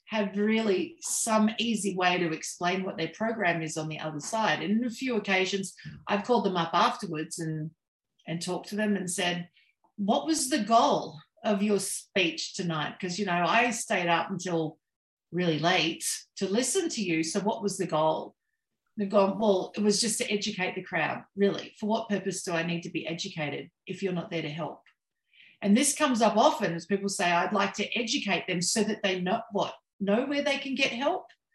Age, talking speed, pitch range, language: 50-69, 205 wpm, 180-245 Hz, English